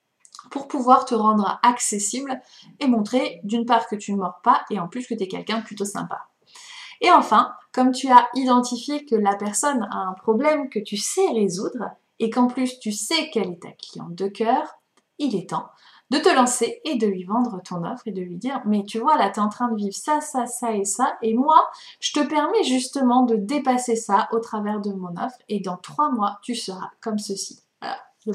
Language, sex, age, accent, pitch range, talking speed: French, female, 20-39, French, 205-255 Hz, 225 wpm